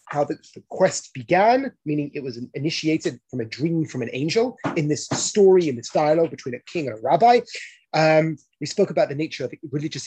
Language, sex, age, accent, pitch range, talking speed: English, male, 30-49, British, 135-200 Hz, 205 wpm